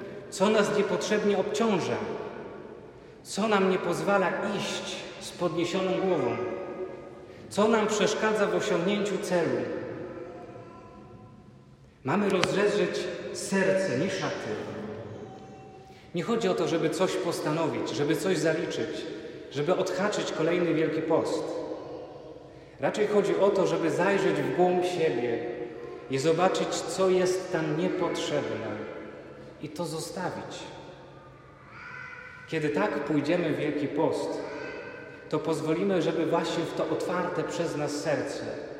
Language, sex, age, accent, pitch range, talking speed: Polish, male, 40-59, native, 150-190 Hz, 110 wpm